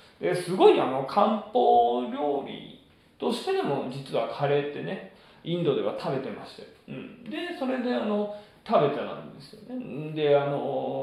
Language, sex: Japanese, male